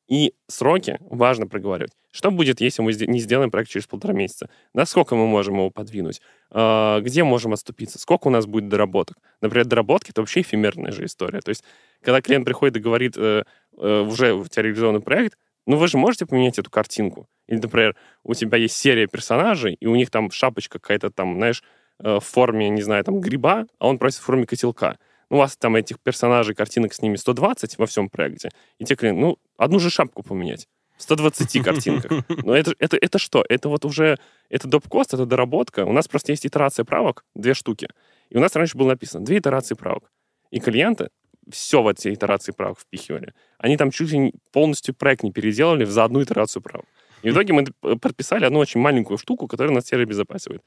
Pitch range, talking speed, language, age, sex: 110-145 Hz, 195 wpm, Russian, 20-39, male